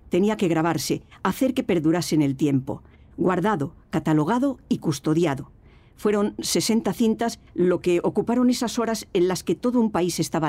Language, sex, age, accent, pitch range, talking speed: Spanish, female, 50-69, Spanish, 150-200 Hz, 155 wpm